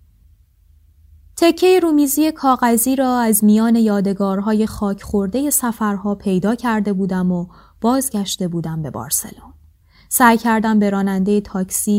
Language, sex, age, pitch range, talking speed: Persian, female, 20-39, 175-220 Hz, 115 wpm